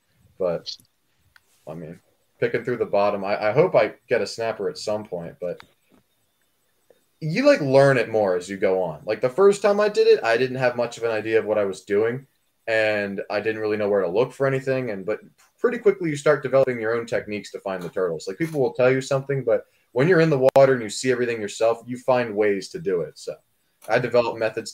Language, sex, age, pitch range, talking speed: English, male, 20-39, 105-155 Hz, 235 wpm